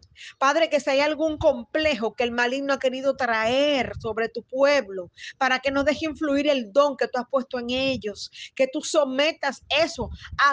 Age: 30-49